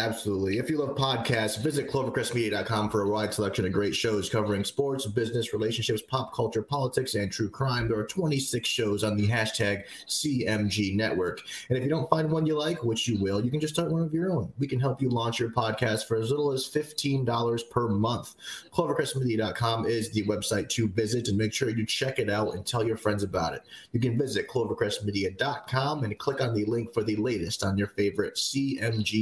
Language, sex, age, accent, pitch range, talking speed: English, male, 30-49, American, 105-125 Hz, 205 wpm